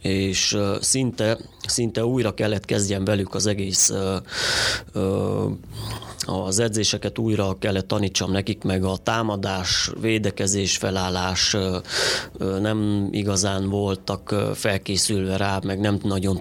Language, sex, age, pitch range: Hungarian, male, 30-49, 95-110 Hz